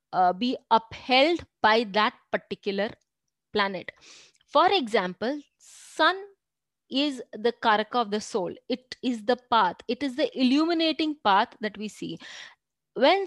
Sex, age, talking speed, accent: female, 20-39, 130 wpm, Indian